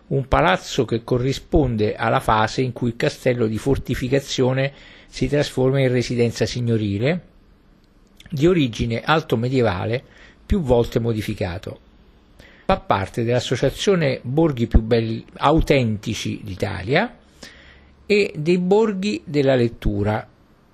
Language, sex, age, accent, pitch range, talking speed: Italian, male, 50-69, native, 105-150 Hz, 105 wpm